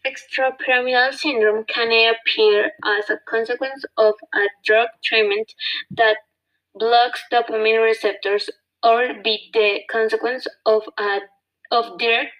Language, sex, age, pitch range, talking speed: English, female, 20-39, 220-260 Hz, 110 wpm